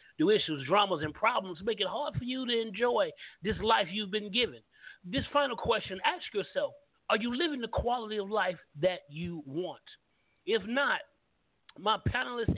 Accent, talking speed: American, 170 wpm